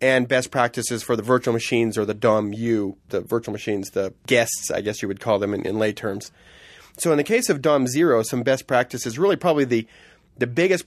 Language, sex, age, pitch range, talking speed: English, male, 30-49, 115-145 Hz, 220 wpm